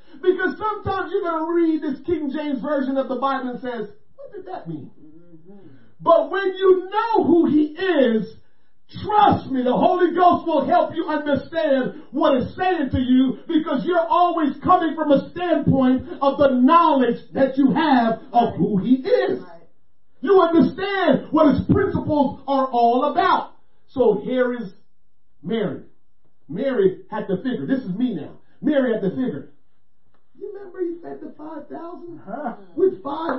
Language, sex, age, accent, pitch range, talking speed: English, male, 40-59, American, 270-360 Hz, 160 wpm